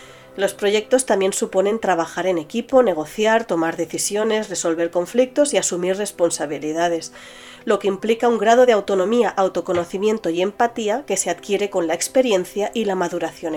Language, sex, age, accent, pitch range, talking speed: Spanish, female, 30-49, Spanish, 175-235 Hz, 150 wpm